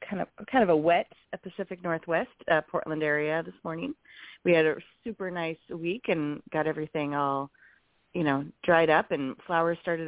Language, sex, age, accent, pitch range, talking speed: English, female, 30-49, American, 160-200 Hz, 180 wpm